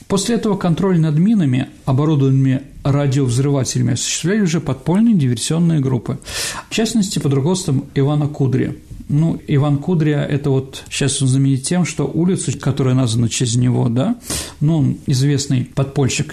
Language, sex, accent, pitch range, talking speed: Russian, male, native, 130-160 Hz, 140 wpm